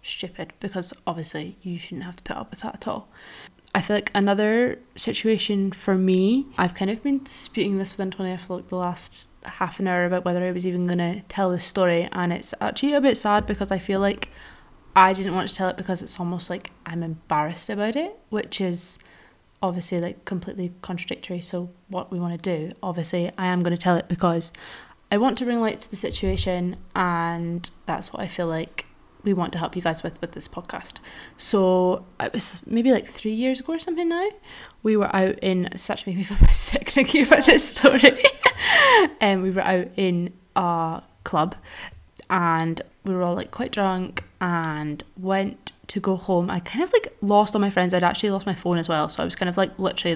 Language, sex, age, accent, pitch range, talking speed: English, female, 20-39, British, 175-210 Hz, 215 wpm